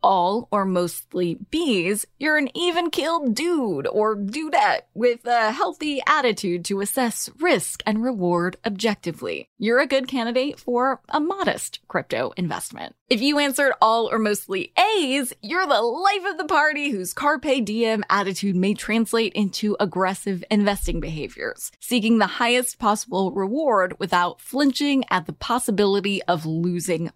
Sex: female